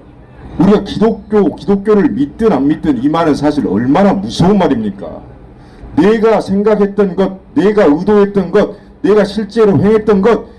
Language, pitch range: English, 145-220 Hz